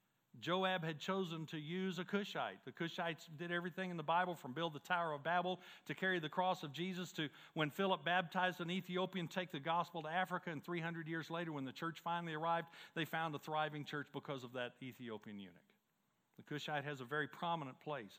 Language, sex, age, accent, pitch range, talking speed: English, male, 50-69, American, 150-190 Hz, 210 wpm